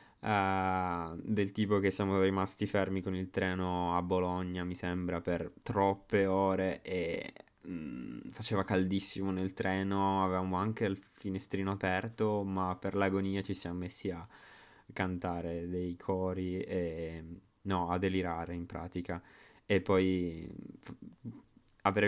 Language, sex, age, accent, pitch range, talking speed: Italian, male, 20-39, native, 90-100 Hz, 120 wpm